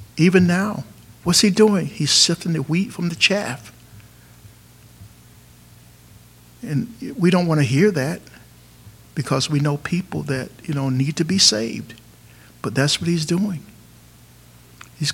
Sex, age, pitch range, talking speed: male, 60-79, 120-180 Hz, 145 wpm